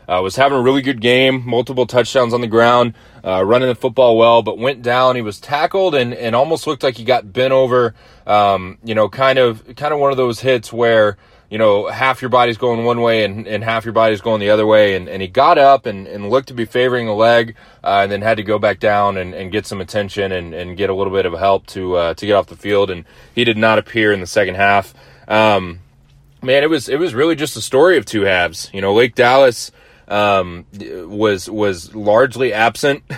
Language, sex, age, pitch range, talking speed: English, male, 20-39, 100-125 Hz, 240 wpm